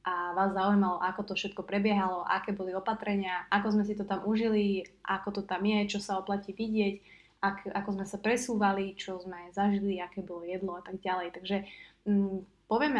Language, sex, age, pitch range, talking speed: Slovak, female, 20-39, 185-215 Hz, 180 wpm